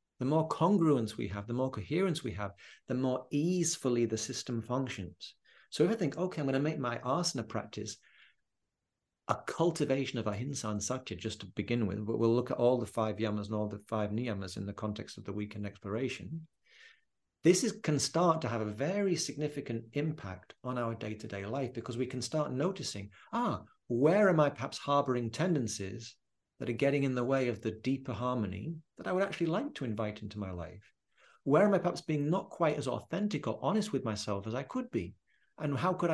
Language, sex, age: English, male, 40-59